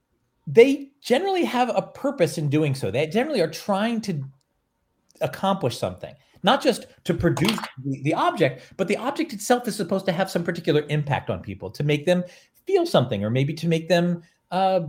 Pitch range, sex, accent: 145-220 Hz, male, American